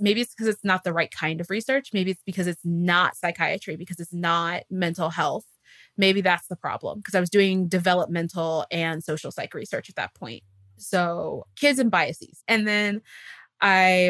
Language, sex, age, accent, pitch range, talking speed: English, female, 20-39, American, 170-195 Hz, 185 wpm